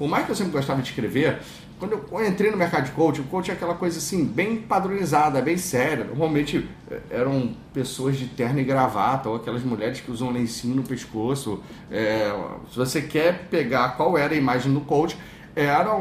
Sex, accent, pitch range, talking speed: male, Brazilian, 130-190 Hz, 190 wpm